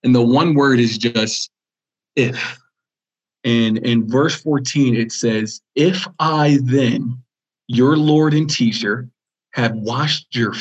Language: English